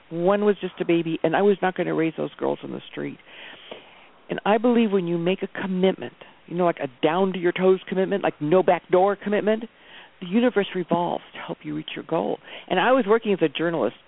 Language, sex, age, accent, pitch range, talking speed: English, female, 50-69, American, 160-205 Hz, 215 wpm